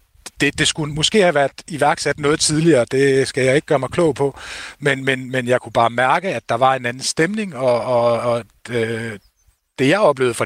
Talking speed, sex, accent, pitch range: 220 wpm, male, native, 120-150 Hz